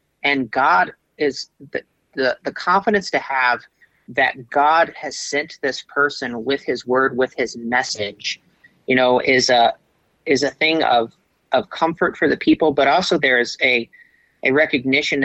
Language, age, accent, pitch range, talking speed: English, 40-59, American, 120-145 Hz, 160 wpm